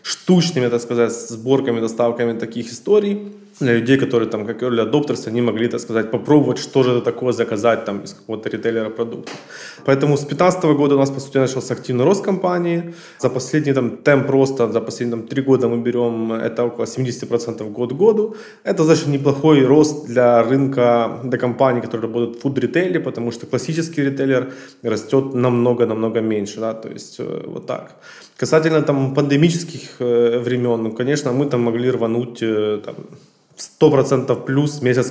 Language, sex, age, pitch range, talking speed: Russian, male, 20-39, 115-140 Hz, 165 wpm